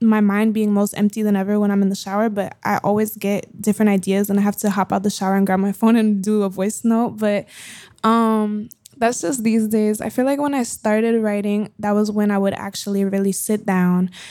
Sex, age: female, 20-39